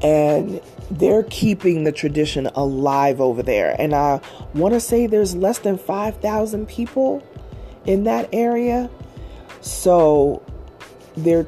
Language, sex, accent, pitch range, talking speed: English, female, American, 135-160 Hz, 120 wpm